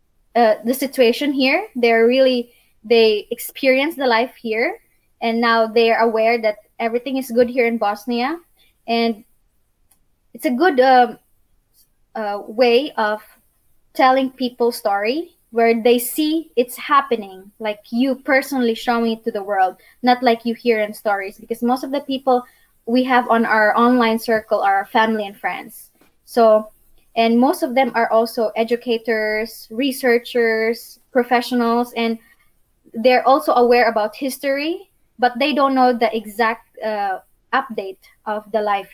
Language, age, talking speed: English, 20-39, 145 wpm